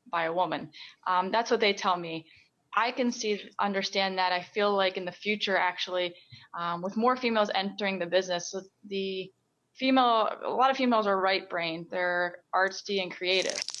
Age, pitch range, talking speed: 20-39, 180-210 Hz, 180 wpm